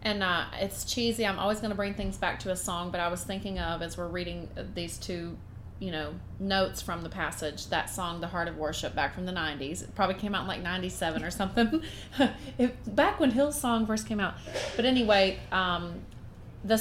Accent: American